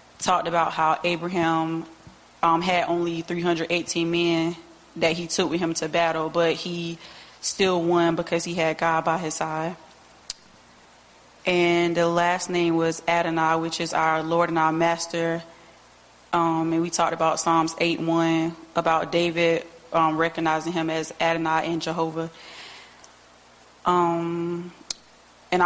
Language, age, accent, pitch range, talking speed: English, 20-39, American, 165-170 Hz, 140 wpm